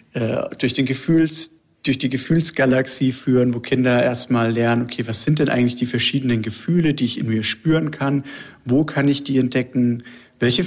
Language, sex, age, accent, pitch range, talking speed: German, male, 40-59, German, 115-135 Hz, 175 wpm